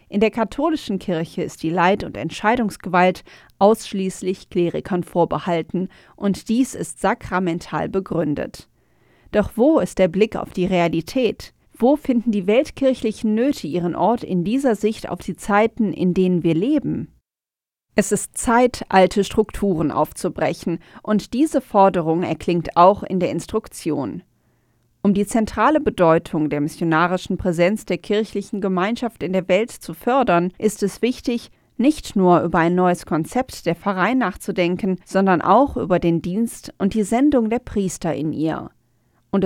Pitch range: 175-220 Hz